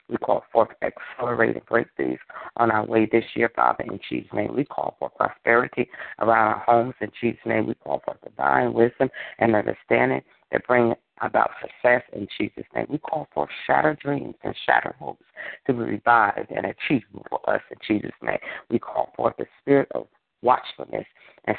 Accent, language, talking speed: American, English, 180 wpm